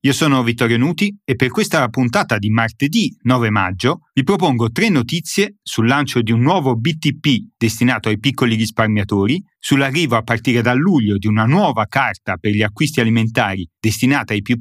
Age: 30-49